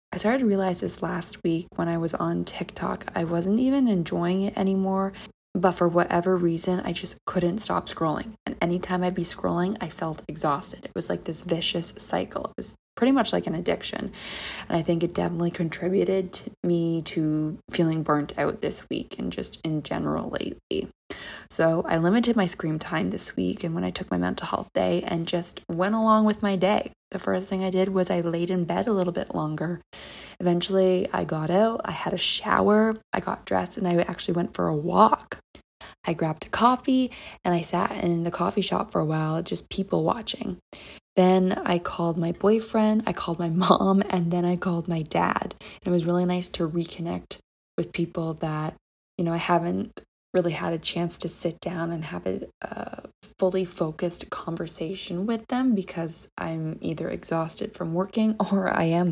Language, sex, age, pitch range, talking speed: English, female, 20-39, 170-195 Hz, 190 wpm